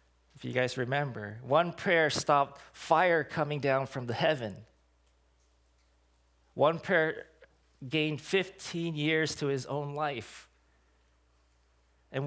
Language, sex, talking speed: English, male, 110 wpm